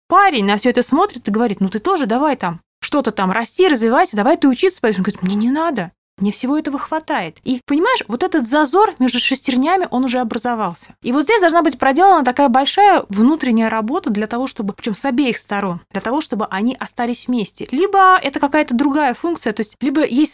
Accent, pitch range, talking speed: native, 200-275 Hz, 205 wpm